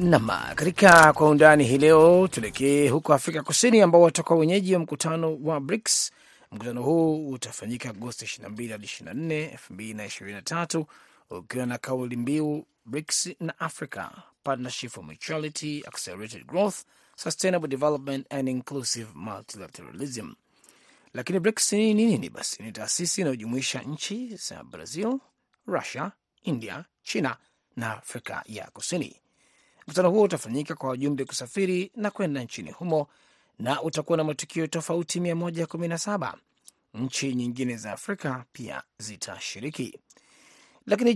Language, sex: Swahili, male